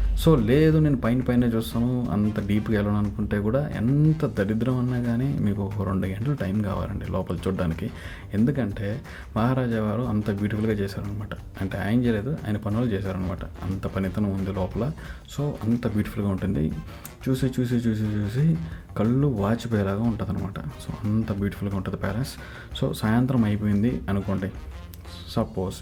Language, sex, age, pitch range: Telugu, male, 30-49, 95-120 Hz